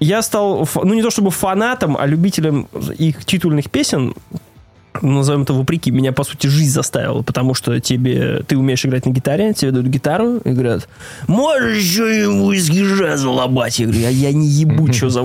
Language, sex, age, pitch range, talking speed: Russian, male, 20-39, 140-190 Hz, 180 wpm